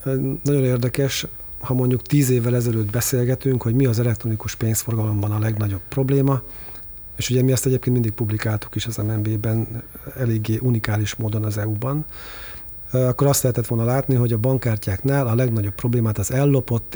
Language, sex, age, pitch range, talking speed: Hungarian, male, 40-59, 105-125 Hz, 155 wpm